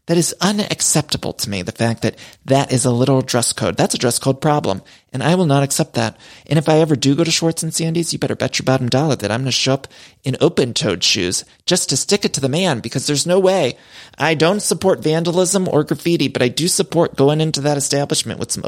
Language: English